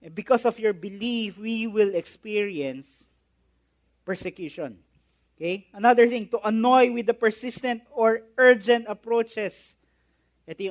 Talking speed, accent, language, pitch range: 110 wpm, Filipino, English, 160-230 Hz